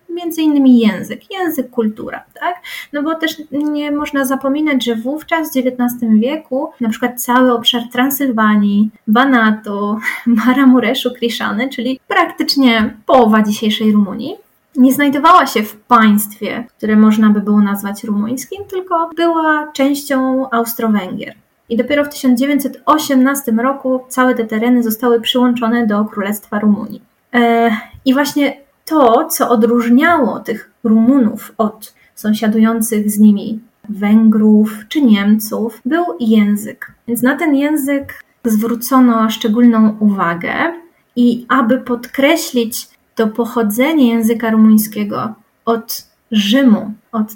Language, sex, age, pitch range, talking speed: Polish, female, 20-39, 220-280 Hz, 115 wpm